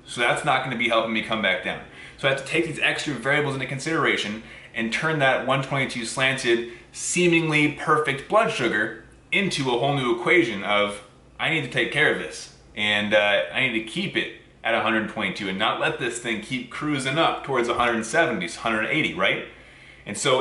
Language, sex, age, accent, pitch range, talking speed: English, male, 20-39, American, 115-140 Hz, 190 wpm